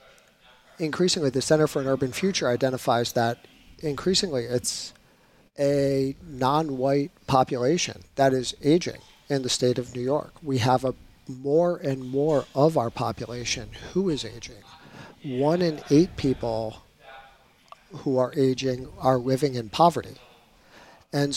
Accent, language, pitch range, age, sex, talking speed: American, English, 125-145 Hz, 40-59, male, 130 wpm